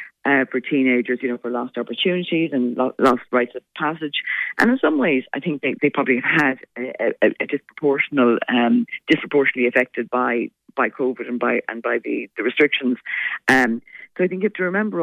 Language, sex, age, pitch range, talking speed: English, female, 40-59, 125-160 Hz, 205 wpm